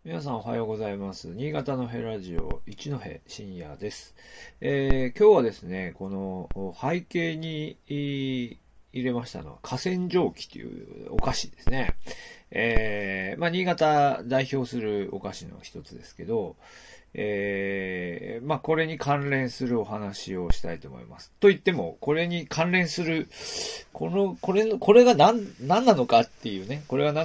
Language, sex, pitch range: Japanese, male, 105-175 Hz